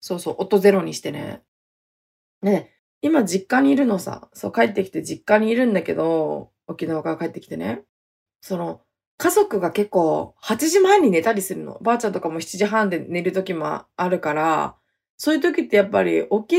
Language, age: Japanese, 20-39